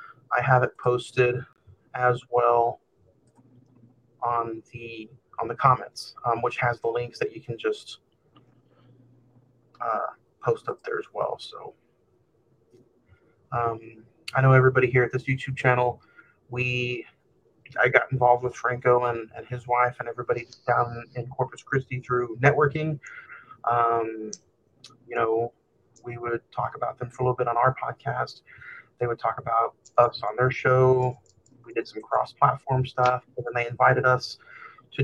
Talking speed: 150 wpm